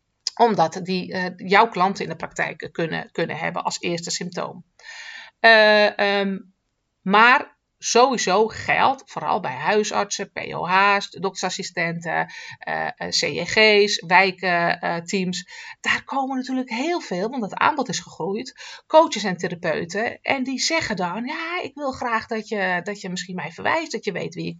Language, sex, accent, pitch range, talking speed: Dutch, female, Dutch, 185-230 Hz, 145 wpm